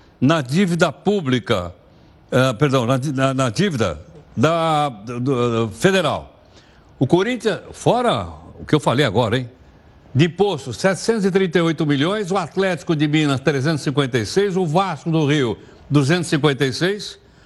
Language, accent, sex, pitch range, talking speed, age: Portuguese, Brazilian, male, 135-190 Hz, 120 wpm, 60-79